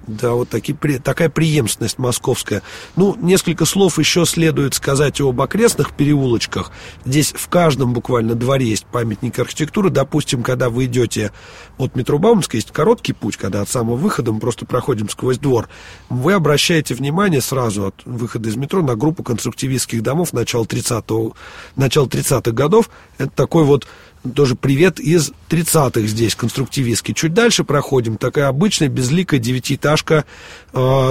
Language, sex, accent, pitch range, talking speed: Russian, male, native, 120-150 Hz, 145 wpm